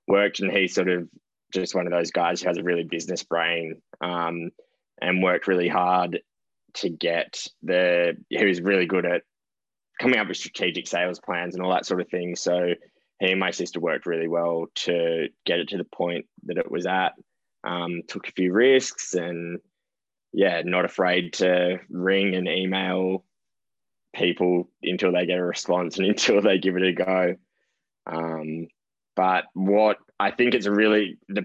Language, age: English, 10-29